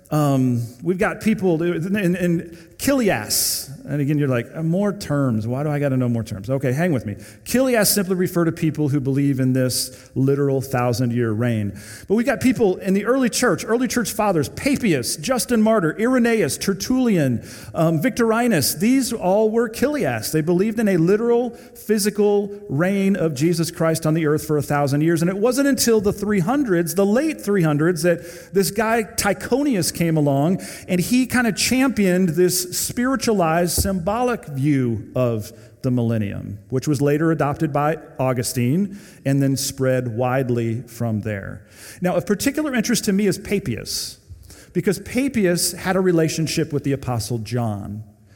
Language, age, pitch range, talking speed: English, 40-59, 130-205 Hz, 165 wpm